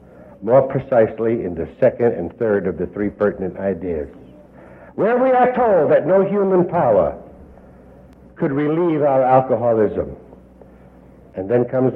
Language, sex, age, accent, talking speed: English, male, 60-79, American, 135 wpm